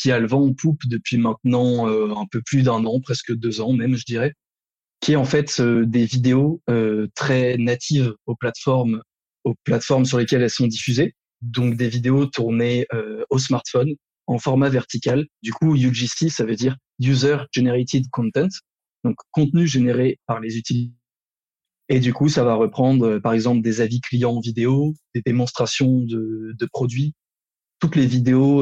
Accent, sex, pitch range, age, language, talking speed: French, male, 115-135 Hz, 20-39, French, 175 wpm